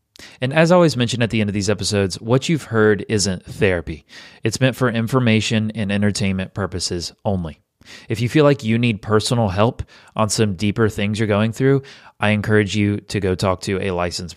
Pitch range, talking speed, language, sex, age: 100-115 Hz, 200 wpm, English, male, 30-49